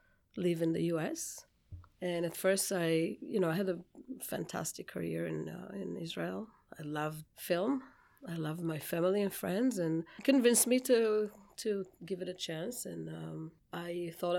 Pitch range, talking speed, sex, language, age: 165-190 Hz, 175 wpm, female, English, 30-49